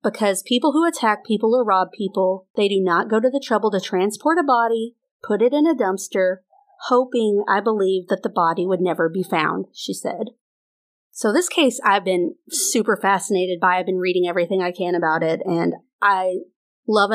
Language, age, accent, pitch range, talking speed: English, 30-49, American, 185-225 Hz, 195 wpm